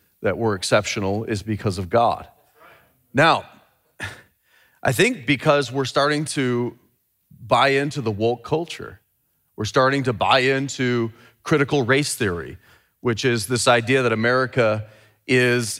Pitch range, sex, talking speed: 115-140 Hz, male, 130 wpm